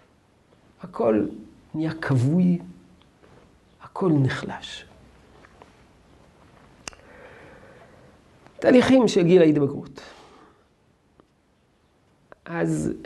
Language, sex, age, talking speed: Hebrew, male, 50-69, 45 wpm